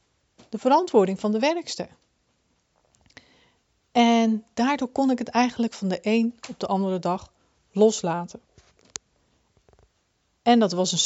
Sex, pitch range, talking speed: female, 190-240 Hz, 125 wpm